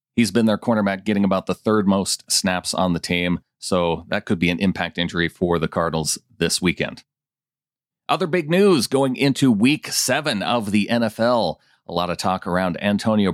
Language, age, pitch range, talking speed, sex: English, 40-59, 95-130 Hz, 185 wpm, male